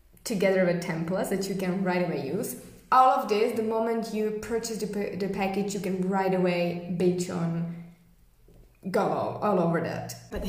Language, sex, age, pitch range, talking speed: English, female, 20-39, 180-210 Hz, 170 wpm